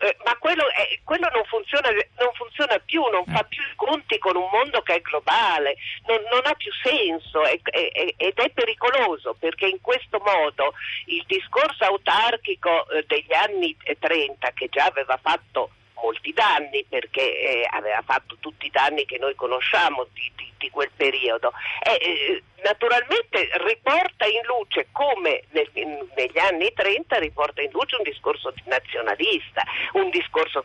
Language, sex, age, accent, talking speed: Italian, female, 50-69, native, 160 wpm